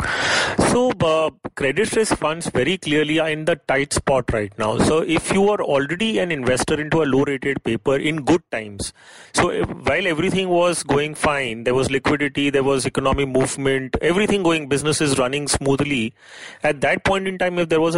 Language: English